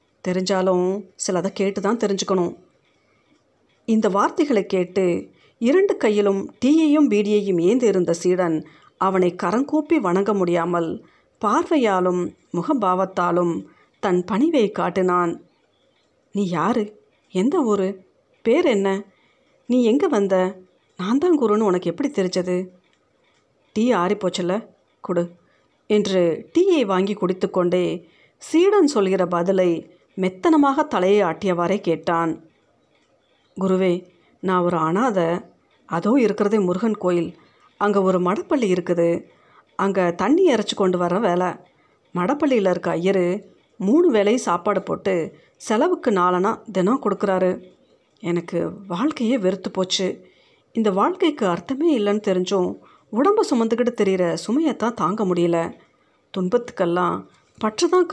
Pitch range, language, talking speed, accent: 180-225 Hz, Tamil, 100 wpm, native